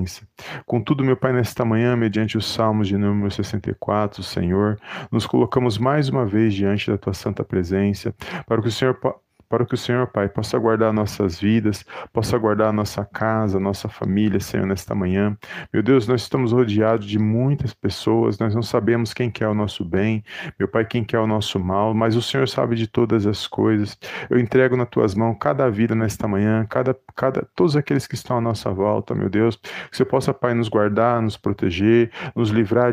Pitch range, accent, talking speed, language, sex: 105-120 Hz, Brazilian, 195 wpm, Portuguese, male